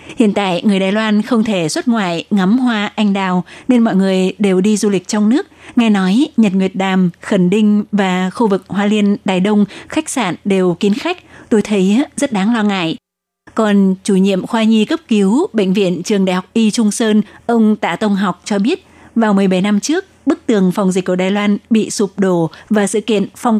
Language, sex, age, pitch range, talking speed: Vietnamese, female, 20-39, 190-230 Hz, 220 wpm